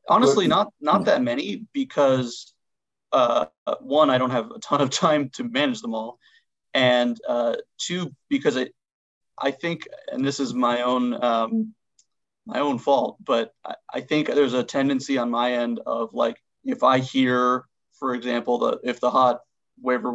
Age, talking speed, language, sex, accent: 30-49, 170 wpm, English, male, American